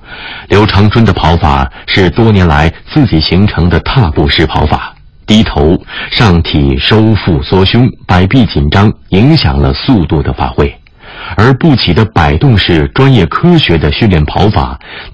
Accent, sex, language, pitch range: native, male, Chinese, 75-105 Hz